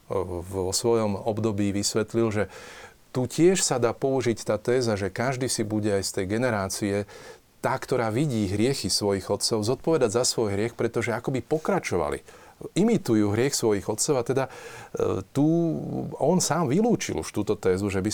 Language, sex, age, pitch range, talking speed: Slovak, male, 40-59, 100-120 Hz, 160 wpm